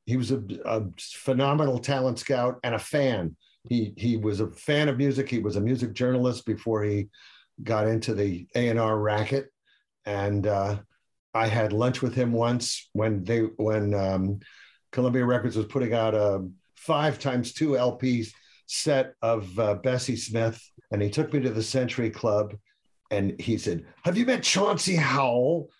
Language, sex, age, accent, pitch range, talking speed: English, male, 50-69, American, 105-130 Hz, 170 wpm